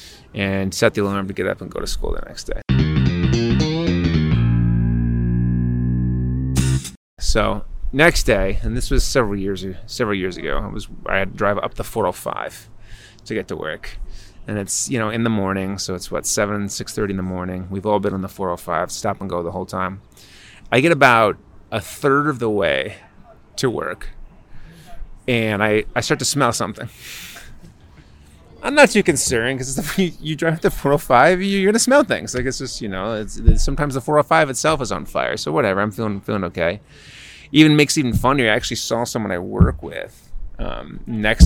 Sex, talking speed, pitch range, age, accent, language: male, 190 wpm, 95-120 Hz, 30-49, American, English